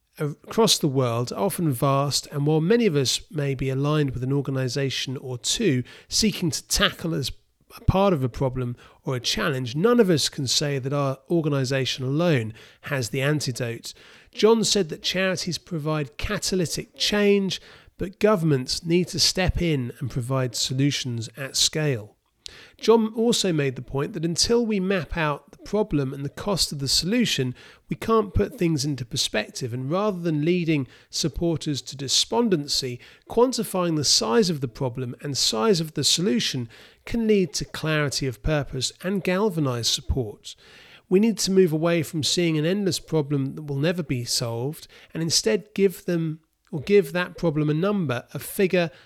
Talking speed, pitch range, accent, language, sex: 170 wpm, 135-185 Hz, British, English, male